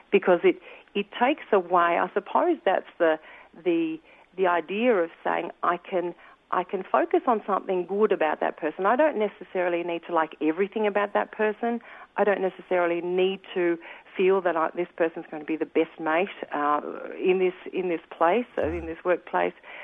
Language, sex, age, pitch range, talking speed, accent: English, female, 50-69, 165-215 Hz, 180 wpm, Australian